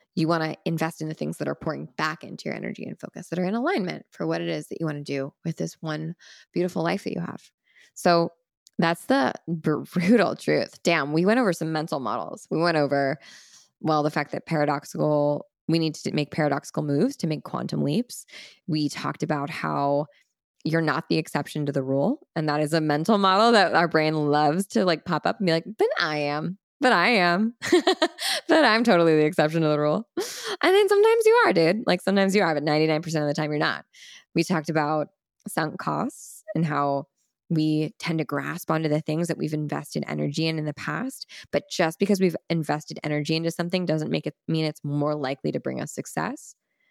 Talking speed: 215 wpm